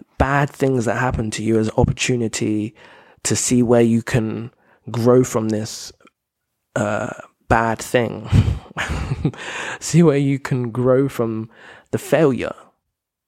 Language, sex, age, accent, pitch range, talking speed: English, male, 20-39, British, 110-125 Hz, 120 wpm